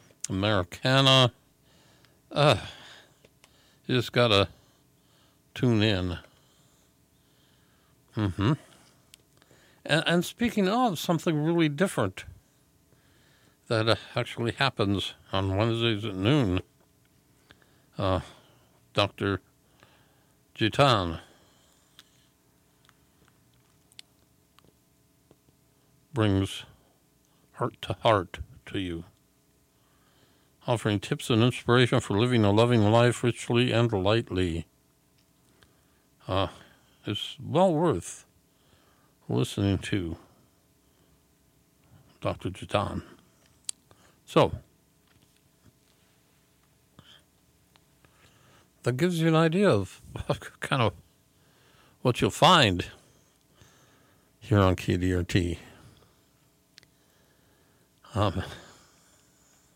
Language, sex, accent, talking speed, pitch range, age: English, male, American, 70 wpm, 95-135 Hz, 60-79